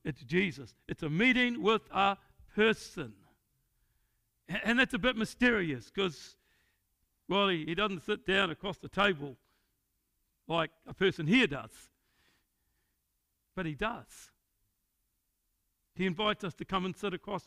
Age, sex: 60-79, male